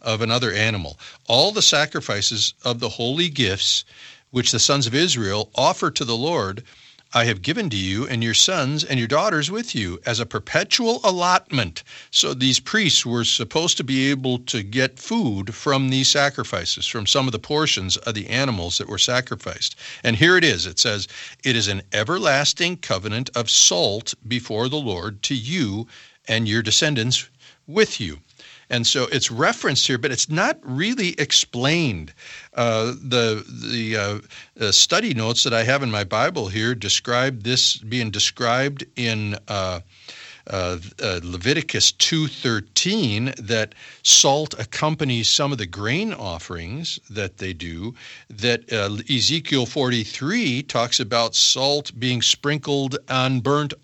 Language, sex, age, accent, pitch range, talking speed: English, male, 50-69, American, 110-140 Hz, 155 wpm